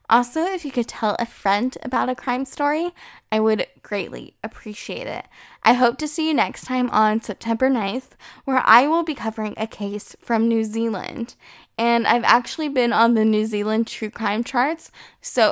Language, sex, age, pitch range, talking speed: English, female, 10-29, 210-250 Hz, 185 wpm